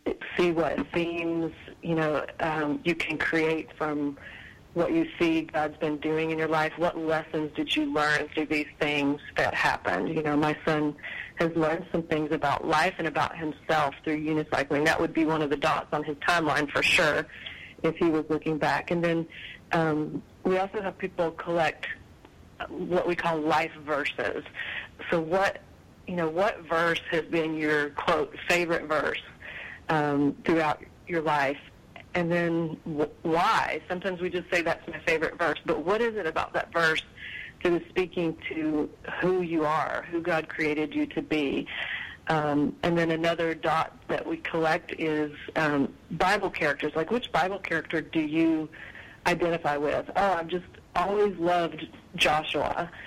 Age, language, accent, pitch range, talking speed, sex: 40-59, English, American, 155-170 Hz, 165 wpm, female